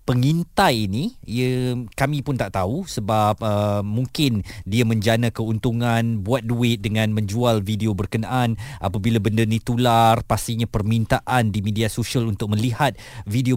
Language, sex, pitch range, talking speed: Malay, male, 115-150 Hz, 135 wpm